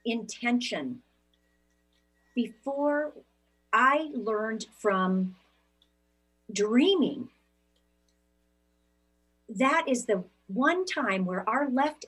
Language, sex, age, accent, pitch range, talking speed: English, female, 40-59, American, 170-245 Hz, 70 wpm